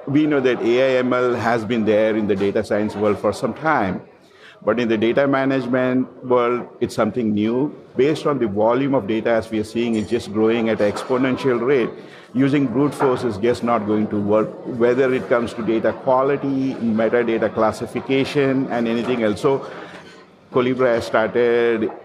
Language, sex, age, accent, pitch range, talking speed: English, male, 50-69, Indian, 115-135 Hz, 175 wpm